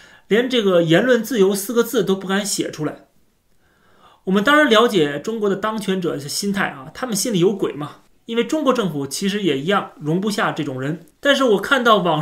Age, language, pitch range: 30-49, Chinese, 155-215 Hz